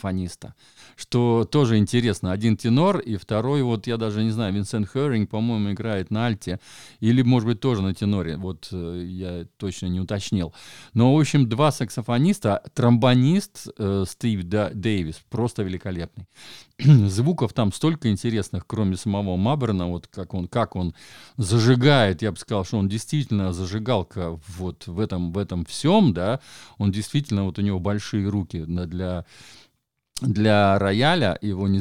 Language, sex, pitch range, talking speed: Russian, male, 95-125 Hz, 155 wpm